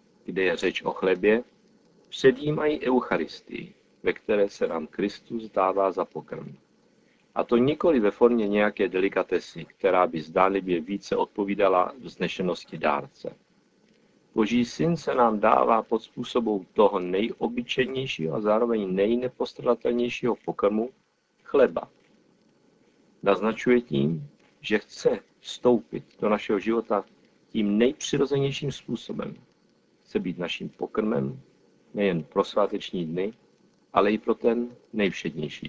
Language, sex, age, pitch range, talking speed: Czech, male, 50-69, 95-120 Hz, 115 wpm